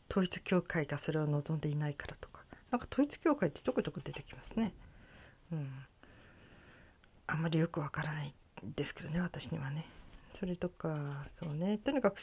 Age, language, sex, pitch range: 40-59, Japanese, female, 150-205 Hz